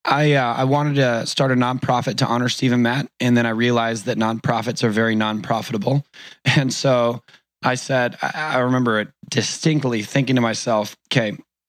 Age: 20-39